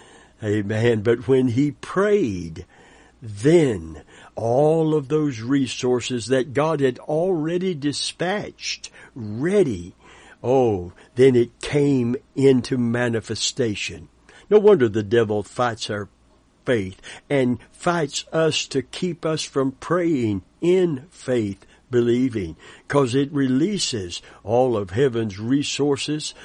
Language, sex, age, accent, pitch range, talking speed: English, male, 60-79, American, 105-135 Hz, 105 wpm